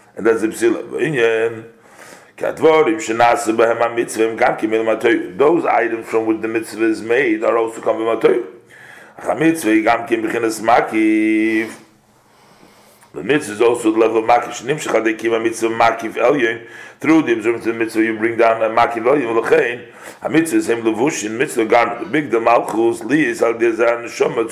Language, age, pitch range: English, 40-59, 115-160 Hz